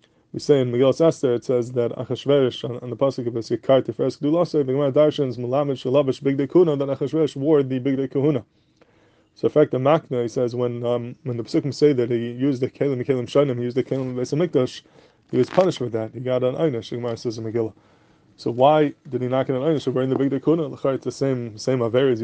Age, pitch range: 20-39, 120-145 Hz